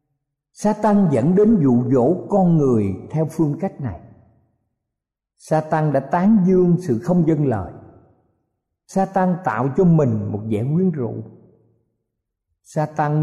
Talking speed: 125 wpm